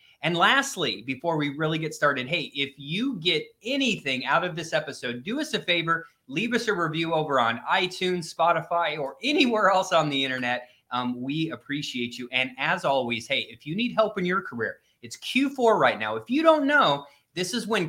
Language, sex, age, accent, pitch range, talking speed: English, male, 30-49, American, 135-205 Hz, 200 wpm